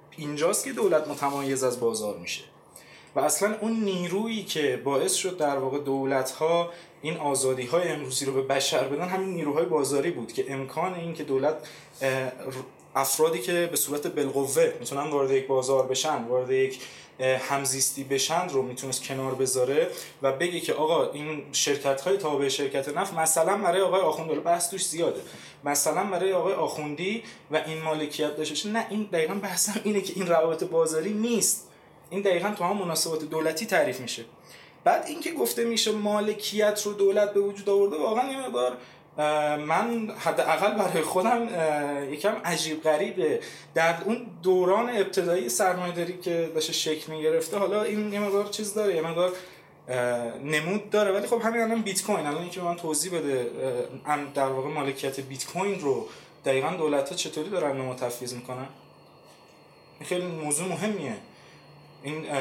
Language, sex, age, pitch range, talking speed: Persian, male, 20-39, 135-190 Hz, 160 wpm